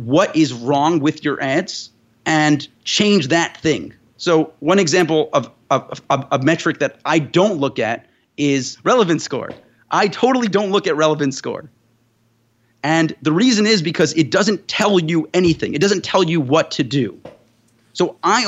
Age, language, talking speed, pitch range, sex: 30-49, English, 170 wpm, 140-190 Hz, male